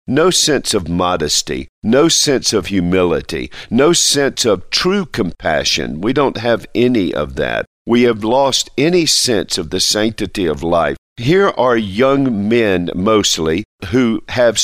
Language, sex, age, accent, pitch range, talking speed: English, male, 50-69, American, 95-120 Hz, 150 wpm